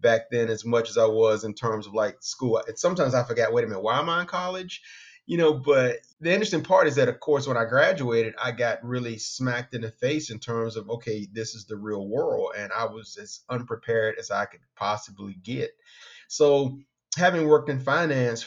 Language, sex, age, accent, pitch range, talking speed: English, male, 30-49, American, 110-130 Hz, 220 wpm